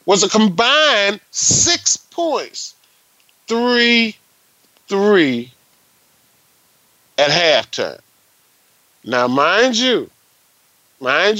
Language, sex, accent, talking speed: English, male, American, 70 wpm